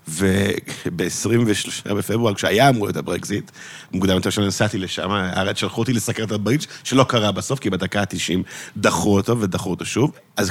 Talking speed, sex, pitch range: 160 wpm, male, 100-130 Hz